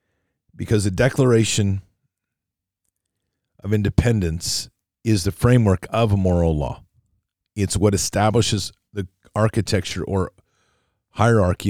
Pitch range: 90-110 Hz